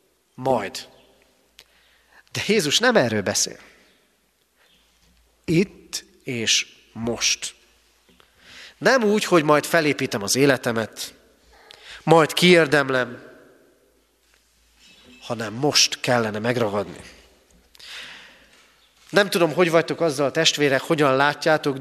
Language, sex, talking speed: Hungarian, male, 85 wpm